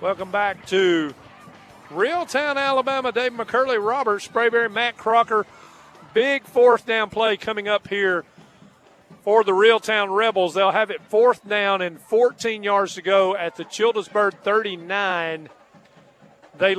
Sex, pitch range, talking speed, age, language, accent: male, 185-225 Hz, 130 wpm, 40-59, English, American